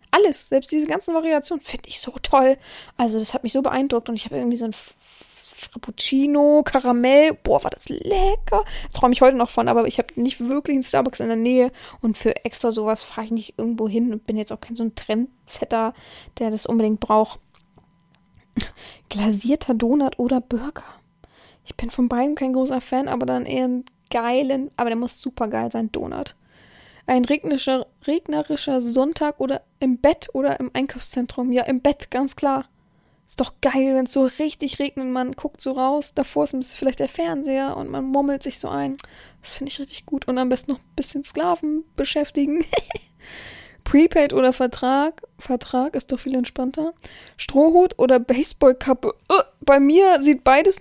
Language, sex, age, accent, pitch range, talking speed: German, female, 20-39, German, 245-290 Hz, 180 wpm